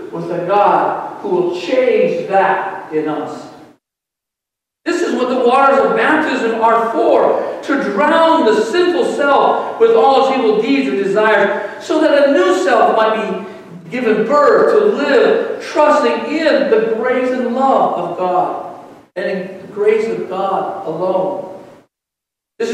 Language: English